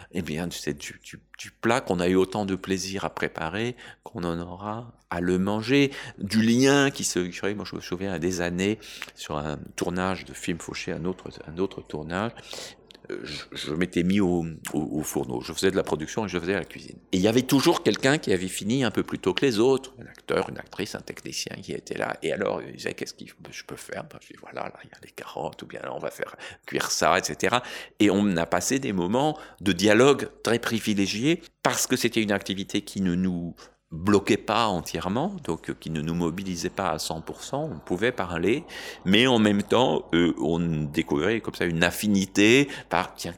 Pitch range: 85-110 Hz